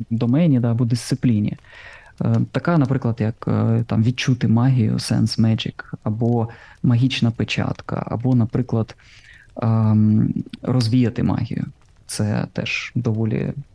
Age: 20-39